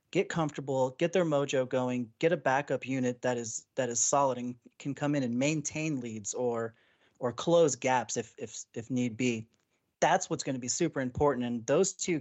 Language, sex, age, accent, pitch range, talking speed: English, male, 30-49, American, 125-150 Hz, 200 wpm